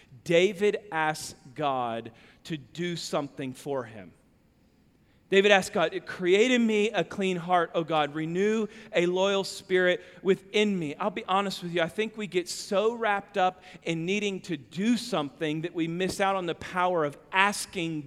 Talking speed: 170 wpm